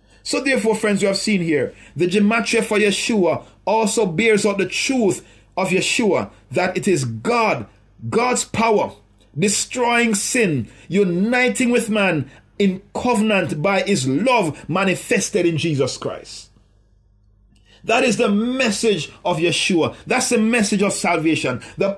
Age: 50-69